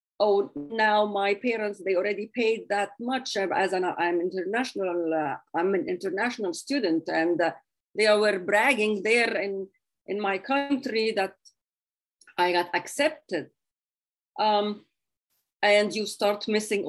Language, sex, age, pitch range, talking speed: English, female, 40-59, 195-270 Hz, 130 wpm